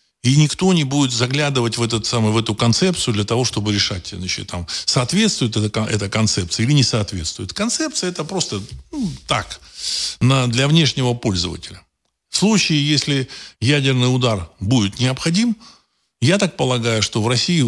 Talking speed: 155 wpm